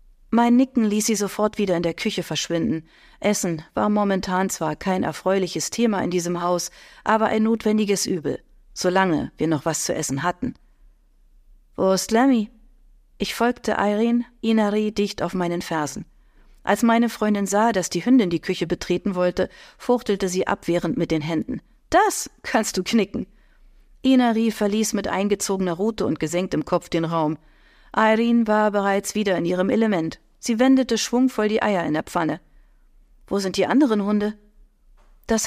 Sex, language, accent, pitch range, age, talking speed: female, German, German, 180-225 Hz, 40-59, 160 wpm